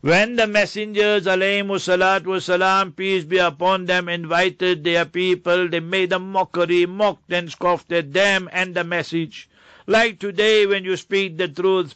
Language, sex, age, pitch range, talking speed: English, male, 60-79, 175-205 Hz, 160 wpm